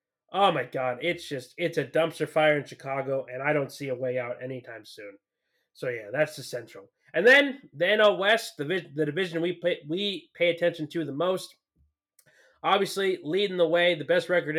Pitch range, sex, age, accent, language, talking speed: 140-175 Hz, male, 20-39, American, English, 200 wpm